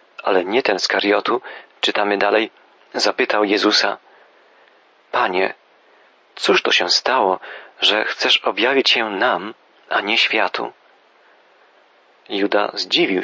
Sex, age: male, 40-59